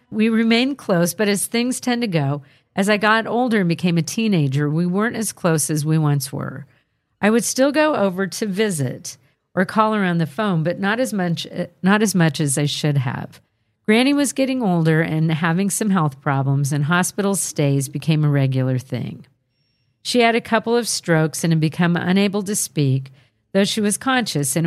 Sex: female